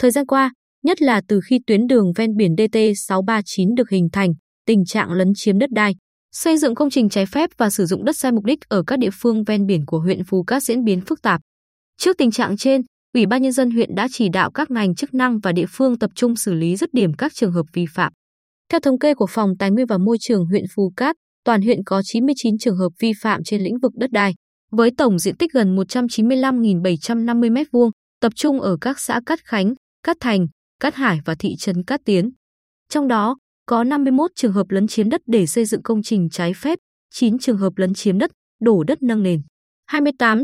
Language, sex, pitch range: Vietnamese, female, 195-255 Hz